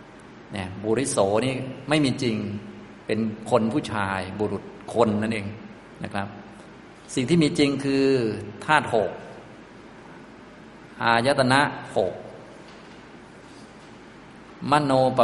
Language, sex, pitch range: Thai, male, 110-135 Hz